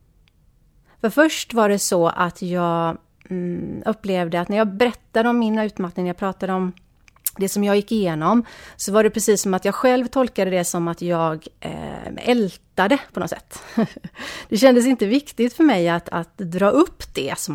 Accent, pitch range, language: native, 170-215 Hz, Swedish